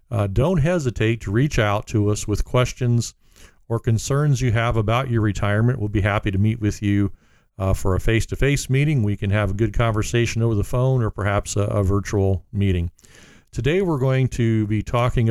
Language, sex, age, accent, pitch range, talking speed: English, male, 50-69, American, 105-125 Hz, 195 wpm